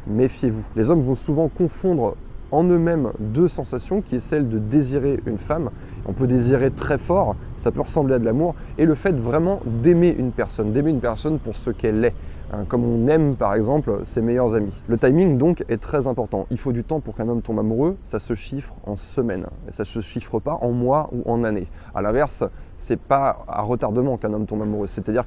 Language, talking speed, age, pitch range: French, 215 wpm, 20-39, 110-145 Hz